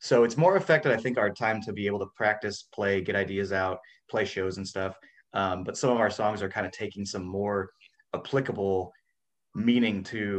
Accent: American